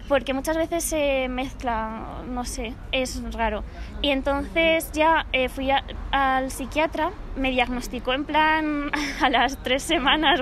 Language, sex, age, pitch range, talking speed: Spanish, female, 20-39, 255-295 Hz, 140 wpm